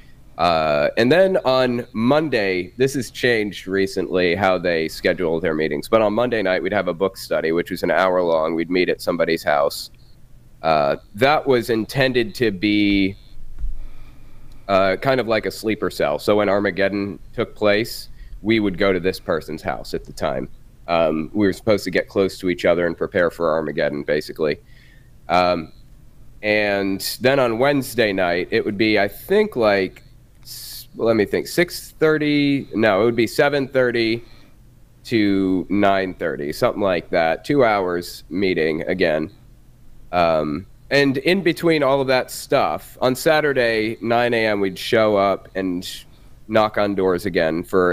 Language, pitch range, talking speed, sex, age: English, 95-125 Hz, 165 wpm, male, 30-49